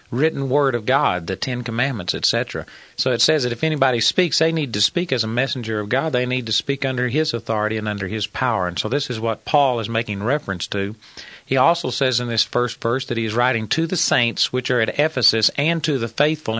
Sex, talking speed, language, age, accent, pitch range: male, 240 wpm, English, 40-59, American, 115-140 Hz